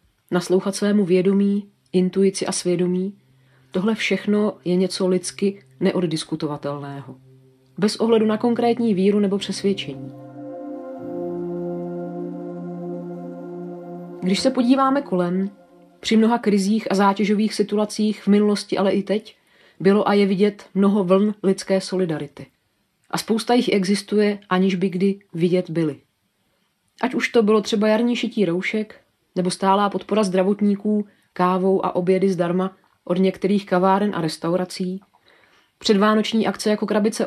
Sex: female